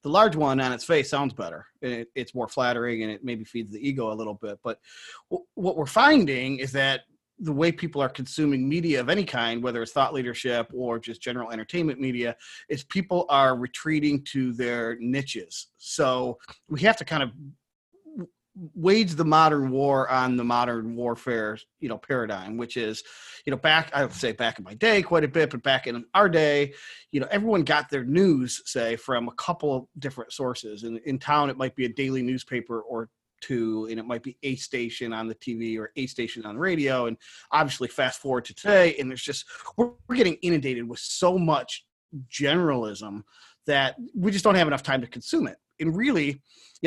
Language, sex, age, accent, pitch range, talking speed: English, male, 30-49, American, 120-160 Hz, 200 wpm